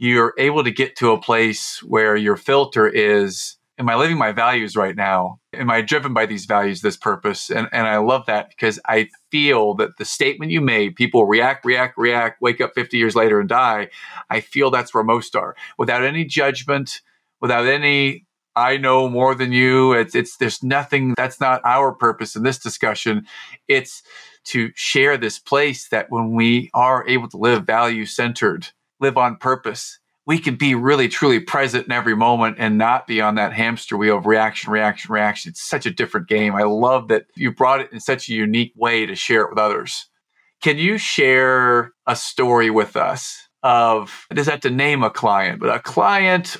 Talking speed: 195 wpm